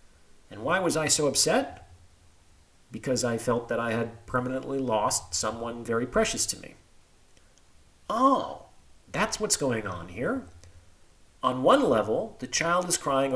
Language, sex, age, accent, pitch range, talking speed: English, male, 40-59, American, 95-140 Hz, 145 wpm